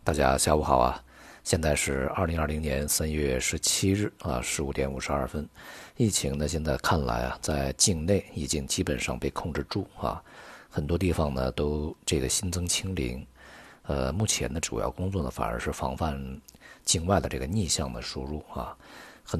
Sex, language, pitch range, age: male, Chinese, 65-90 Hz, 50-69